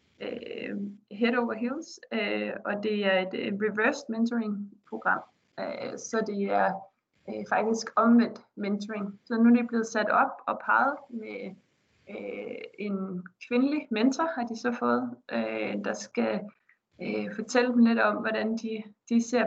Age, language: 20-39, Danish